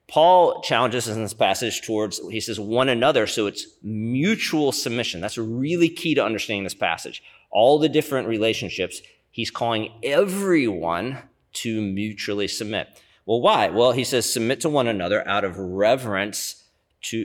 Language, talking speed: English, 155 wpm